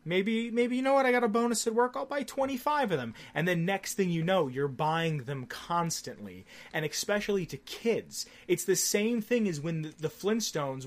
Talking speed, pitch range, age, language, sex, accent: 210 wpm, 145-200 Hz, 30-49, English, male, American